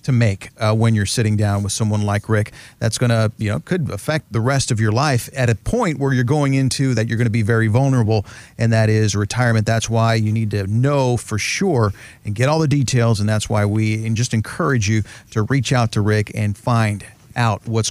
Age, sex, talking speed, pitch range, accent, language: 40-59, male, 240 wpm, 110-130 Hz, American, English